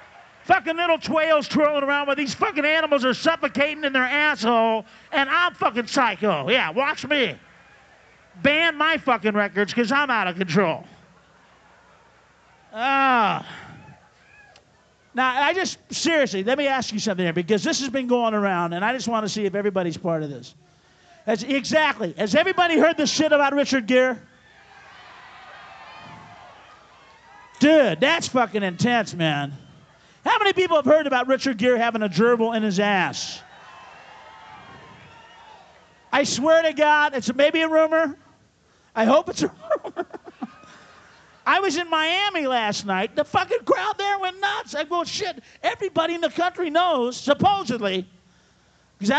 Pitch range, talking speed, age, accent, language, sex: 215-315 Hz, 150 wpm, 40-59, American, English, male